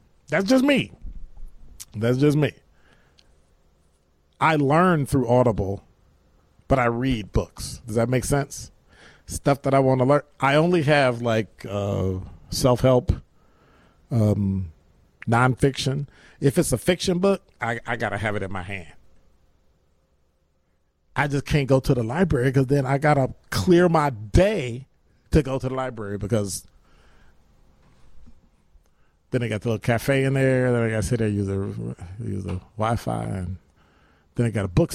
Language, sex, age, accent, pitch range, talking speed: English, male, 40-59, American, 95-150 Hz, 155 wpm